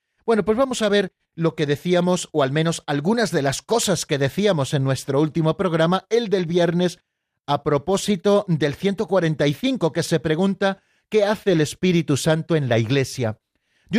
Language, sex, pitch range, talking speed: Spanish, male, 145-190 Hz, 170 wpm